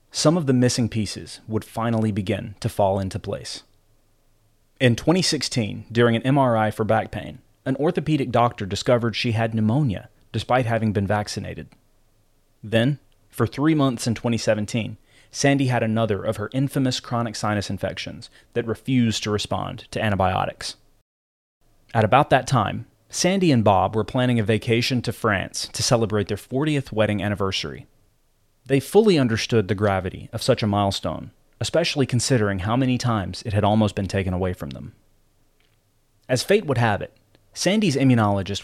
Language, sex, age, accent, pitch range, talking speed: English, male, 30-49, American, 105-130 Hz, 155 wpm